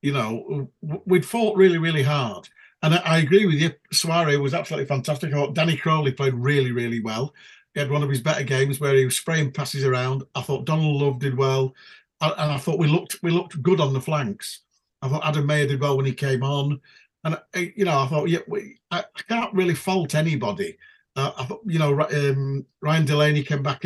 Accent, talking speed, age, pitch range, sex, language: British, 215 wpm, 50-69, 140-180 Hz, male, English